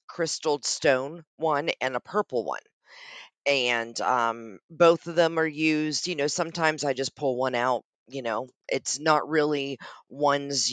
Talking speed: 155 wpm